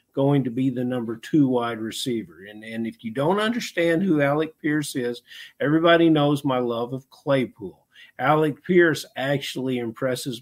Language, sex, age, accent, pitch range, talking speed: English, male, 50-69, American, 110-140 Hz, 160 wpm